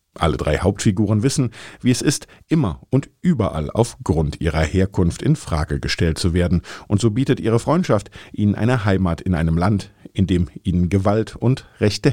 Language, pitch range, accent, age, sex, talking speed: German, 90-115 Hz, German, 50-69, male, 175 wpm